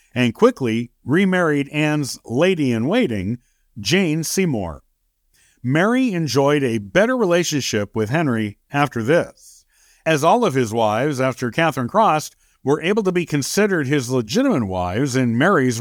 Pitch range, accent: 120-180 Hz, American